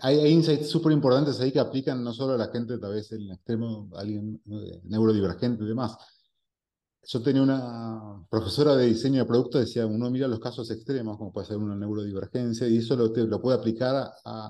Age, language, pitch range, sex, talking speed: 30-49, English, 110-135 Hz, male, 205 wpm